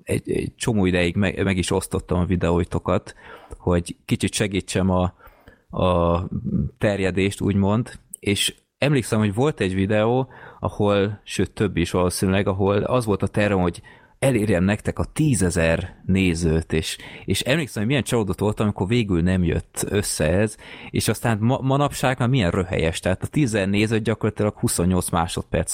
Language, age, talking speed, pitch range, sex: Hungarian, 20-39, 155 wpm, 90-105 Hz, male